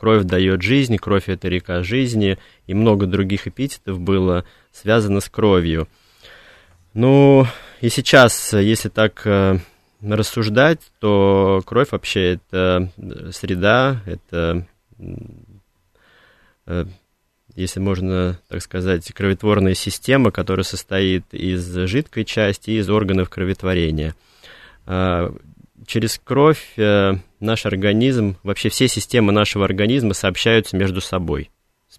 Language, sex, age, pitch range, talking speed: Russian, male, 20-39, 90-105 Hz, 105 wpm